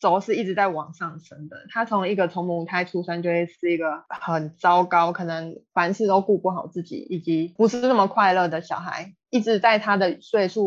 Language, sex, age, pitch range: Chinese, female, 20-39, 170-210 Hz